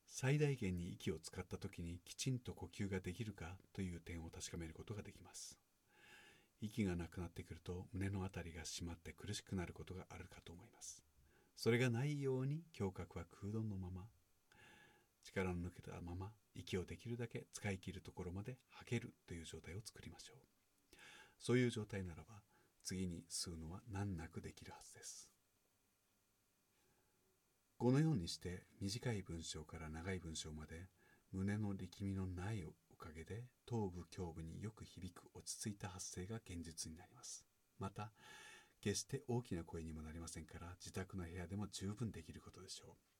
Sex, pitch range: male, 90-105 Hz